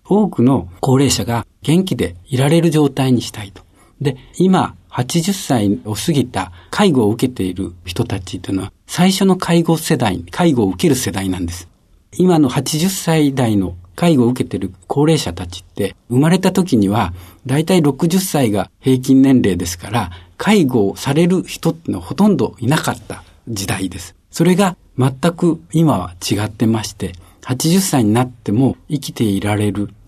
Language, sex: Japanese, male